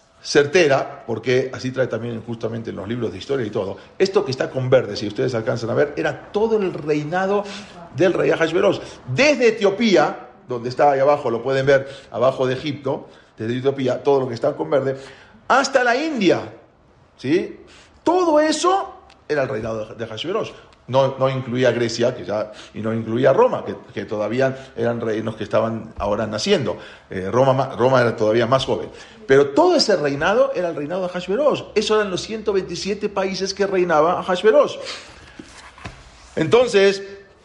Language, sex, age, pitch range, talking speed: Spanish, male, 40-59, 120-190 Hz, 170 wpm